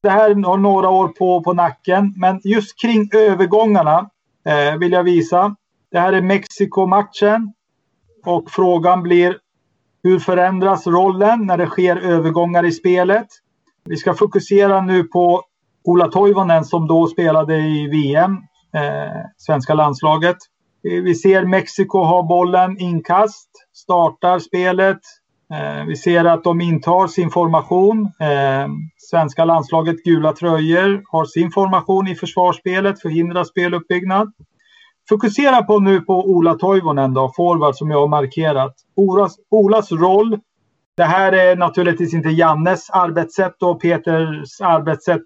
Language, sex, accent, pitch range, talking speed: Swedish, male, native, 165-195 Hz, 130 wpm